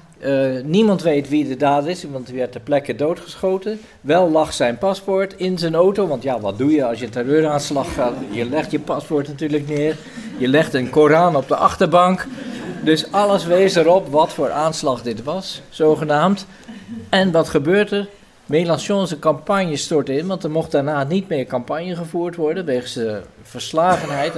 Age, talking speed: 50-69, 175 wpm